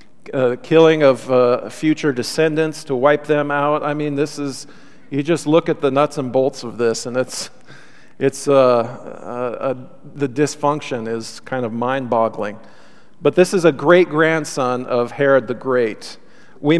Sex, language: male, English